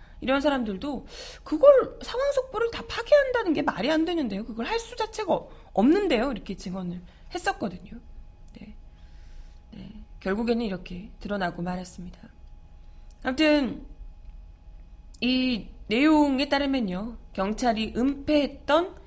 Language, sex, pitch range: Korean, female, 175-290 Hz